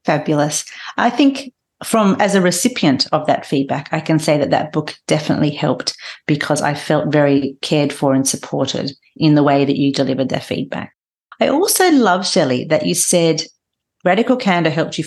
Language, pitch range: English, 150-225 Hz